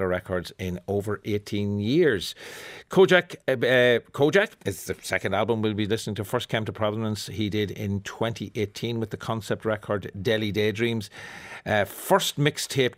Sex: male